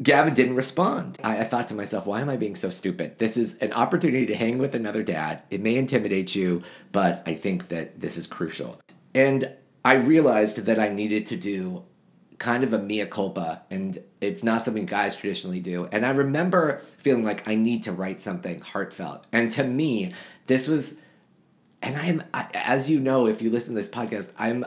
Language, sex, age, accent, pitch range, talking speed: English, male, 30-49, American, 105-140 Hz, 200 wpm